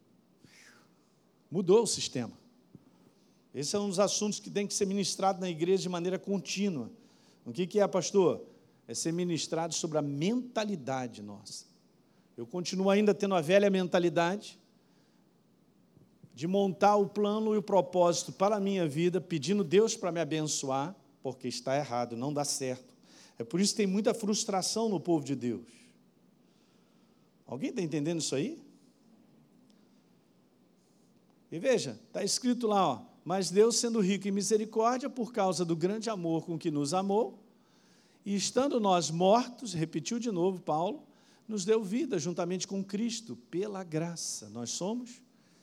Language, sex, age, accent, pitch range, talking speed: Portuguese, male, 50-69, Brazilian, 150-205 Hz, 145 wpm